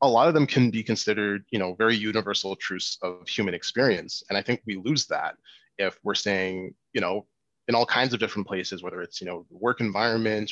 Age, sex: 20-39, male